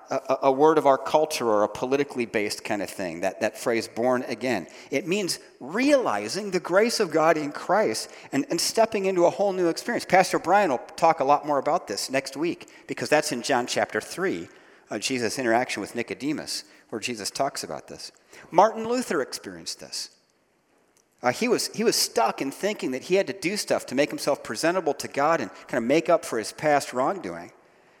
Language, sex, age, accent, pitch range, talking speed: English, male, 40-59, American, 130-210 Hz, 200 wpm